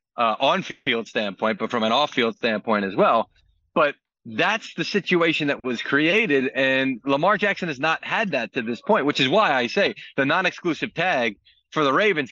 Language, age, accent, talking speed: English, 40-59, American, 185 wpm